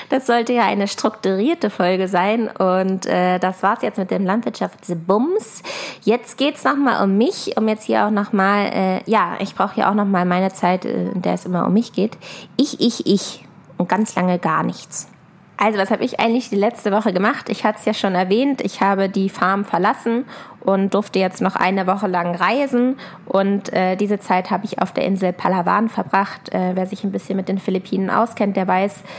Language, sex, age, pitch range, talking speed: German, female, 20-39, 185-225 Hz, 210 wpm